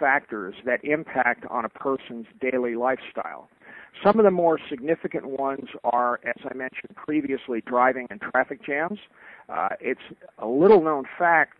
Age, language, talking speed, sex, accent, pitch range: 50-69, English, 145 wpm, male, American, 130-165 Hz